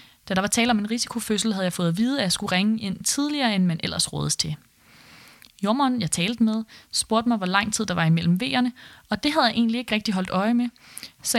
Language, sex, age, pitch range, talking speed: Danish, female, 20-39, 175-225 Hz, 250 wpm